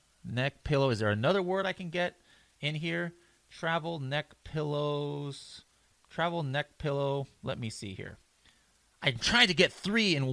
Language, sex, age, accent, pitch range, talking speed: English, male, 30-49, American, 120-170 Hz, 155 wpm